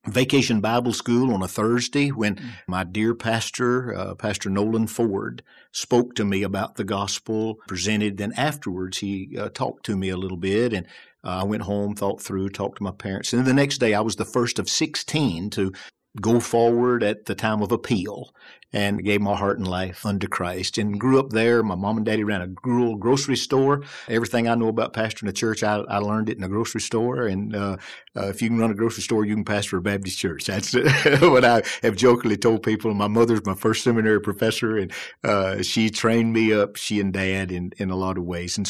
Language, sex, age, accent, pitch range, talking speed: English, male, 50-69, American, 100-115 Hz, 215 wpm